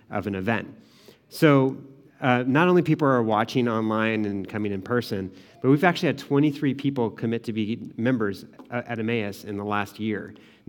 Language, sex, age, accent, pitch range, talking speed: English, male, 30-49, American, 105-130 Hz, 185 wpm